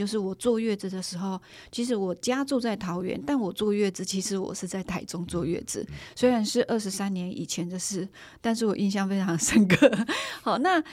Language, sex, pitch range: Chinese, female, 190-230 Hz